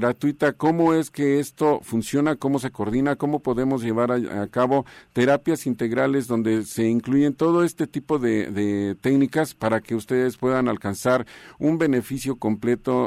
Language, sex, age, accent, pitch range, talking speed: Spanish, male, 50-69, Mexican, 110-140 Hz, 150 wpm